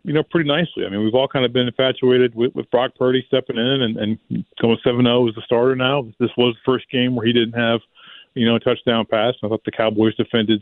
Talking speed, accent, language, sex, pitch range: 260 wpm, American, English, male, 105-125 Hz